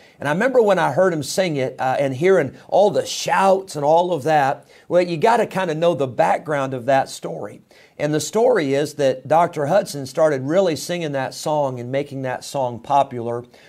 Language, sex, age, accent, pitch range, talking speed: English, male, 50-69, American, 135-170 Hz, 210 wpm